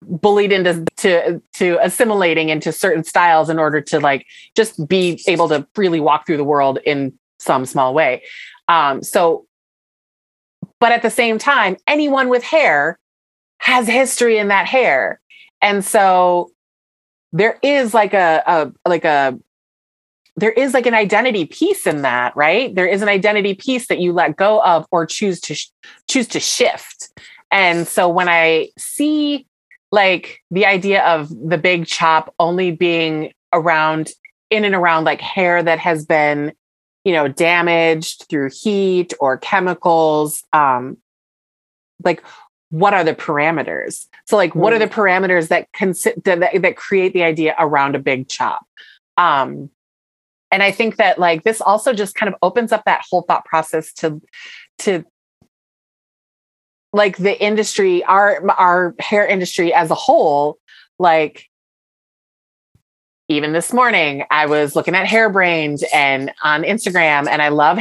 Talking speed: 150 wpm